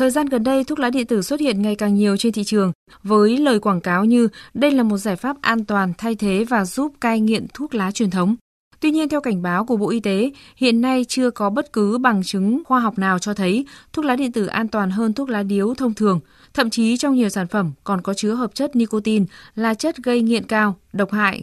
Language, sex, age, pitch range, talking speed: Vietnamese, female, 20-39, 200-240 Hz, 255 wpm